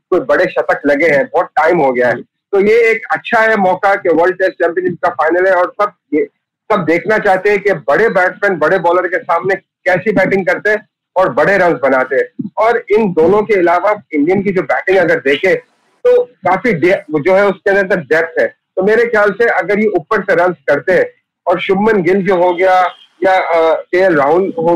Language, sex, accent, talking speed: Hindi, male, native, 210 wpm